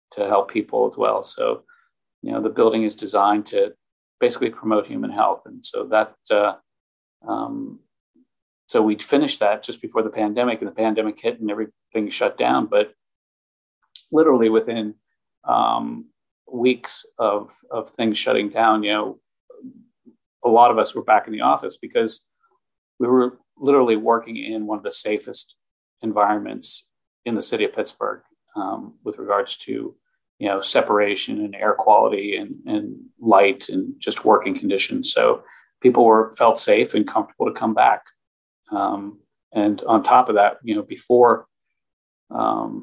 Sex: male